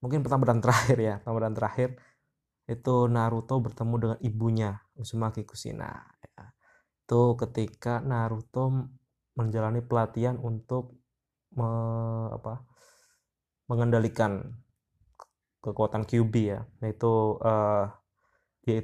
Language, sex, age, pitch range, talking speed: Indonesian, male, 20-39, 110-125 Hz, 90 wpm